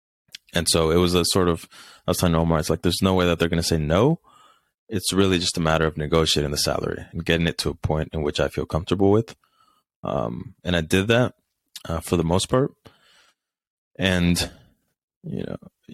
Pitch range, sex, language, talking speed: 80-95 Hz, male, English, 210 wpm